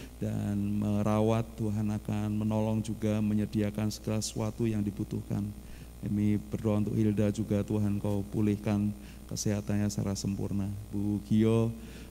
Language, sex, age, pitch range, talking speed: Indonesian, male, 30-49, 105-115 Hz, 120 wpm